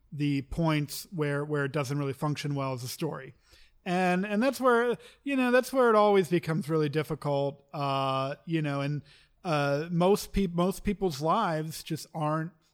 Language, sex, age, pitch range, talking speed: English, male, 40-59, 140-165 Hz, 175 wpm